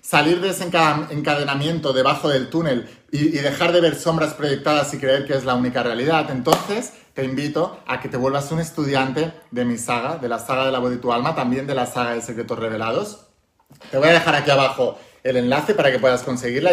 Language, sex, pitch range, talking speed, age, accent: Spanish, male, 130-160 Hz, 220 wpm, 30-49, Spanish